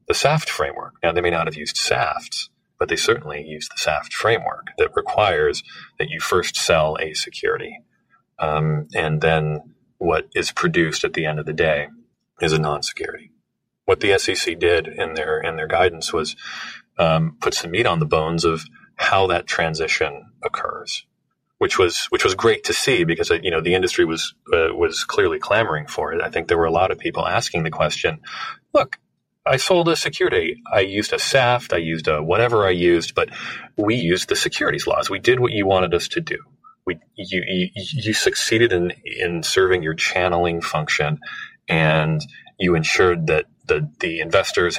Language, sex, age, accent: English, male, 30-49, American